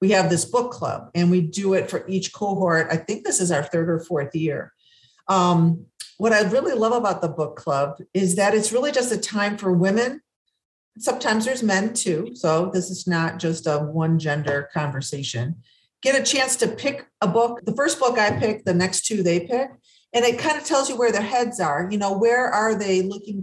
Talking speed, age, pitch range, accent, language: 220 wpm, 50-69, 165-220 Hz, American, English